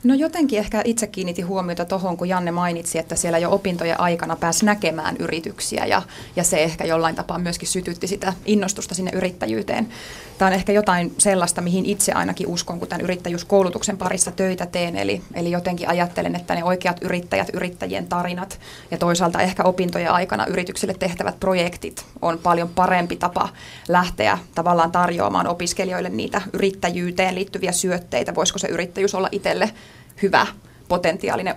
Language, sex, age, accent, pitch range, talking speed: Finnish, female, 20-39, native, 175-195 Hz, 155 wpm